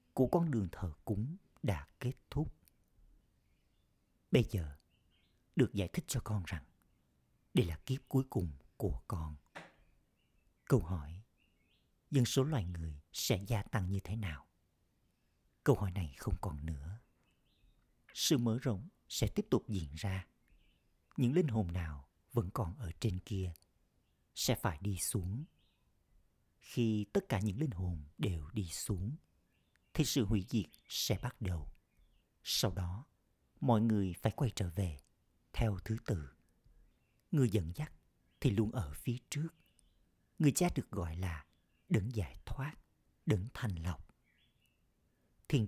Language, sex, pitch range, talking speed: Vietnamese, male, 85-120 Hz, 145 wpm